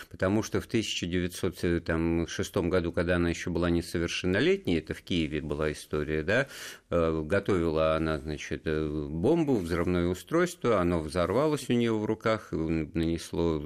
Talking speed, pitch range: 125 wpm, 80-95 Hz